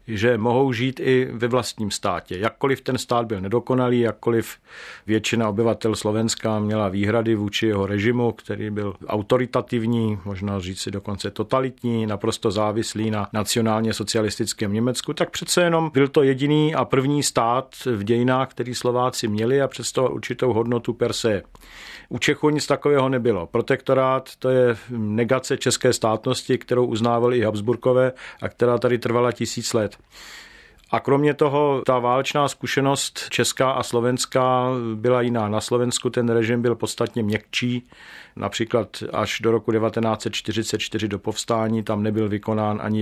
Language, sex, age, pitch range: Czech, male, 50-69, 110-130 Hz